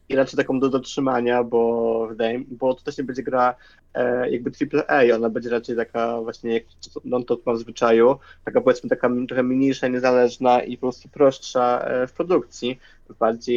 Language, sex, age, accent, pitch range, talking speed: Polish, male, 20-39, native, 115-130 Hz, 180 wpm